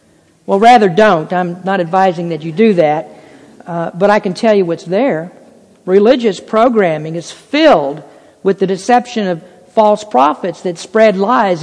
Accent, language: American, English